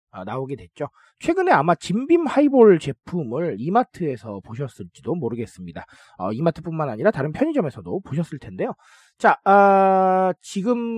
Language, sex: Korean, male